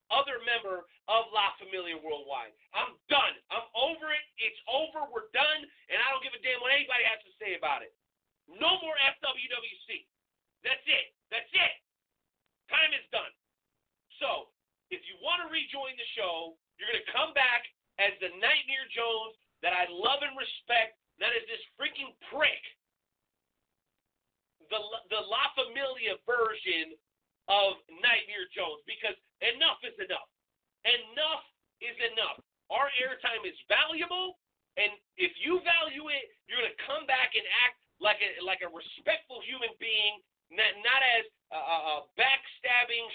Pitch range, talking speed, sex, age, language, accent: 220-300 Hz, 150 wpm, male, 40-59, English, American